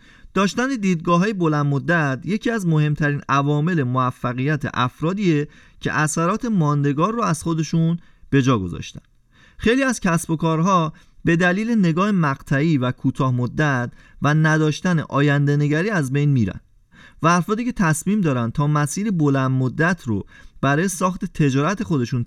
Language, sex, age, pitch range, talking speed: Persian, male, 30-49, 135-180 Hz, 135 wpm